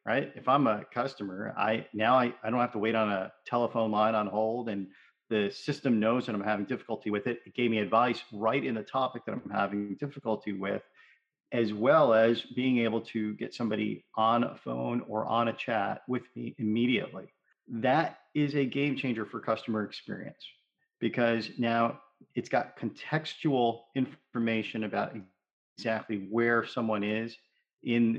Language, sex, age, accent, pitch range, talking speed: English, male, 40-59, American, 105-125 Hz, 170 wpm